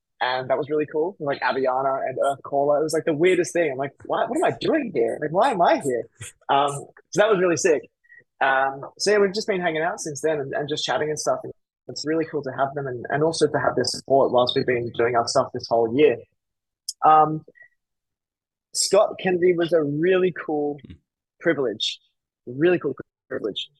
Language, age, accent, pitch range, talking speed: English, 20-39, Australian, 125-160 Hz, 215 wpm